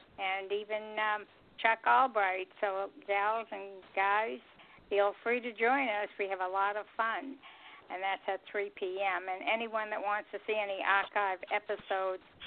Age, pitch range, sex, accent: 60-79, 190-210 Hz, female, American